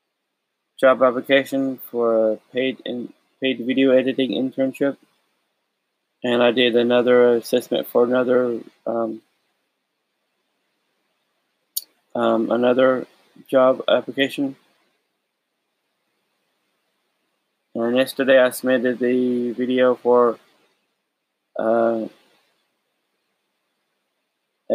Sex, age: male, 20-39